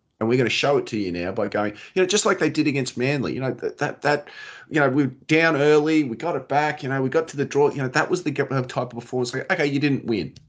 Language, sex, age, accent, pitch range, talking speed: English, male, 30-49, Australian, 105-145 Hz, 310 wpm